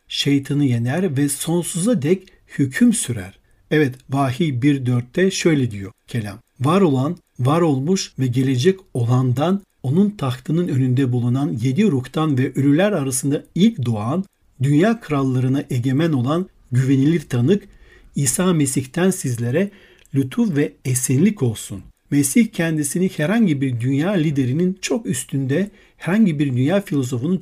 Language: Turkish